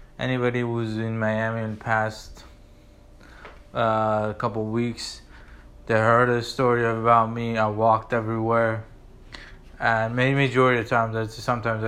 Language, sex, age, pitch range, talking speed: English, male, 20-39, 105-120 Hz, 140 wpm